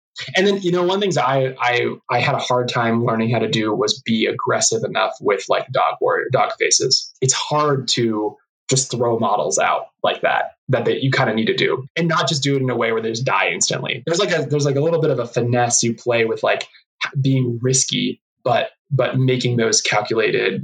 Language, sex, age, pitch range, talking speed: English, male, 20-39, 120-150 Hz, 235 wpm